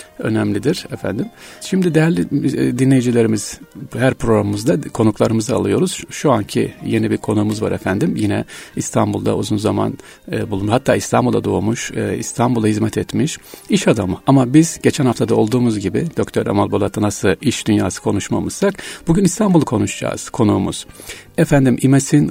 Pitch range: 105-140 Hz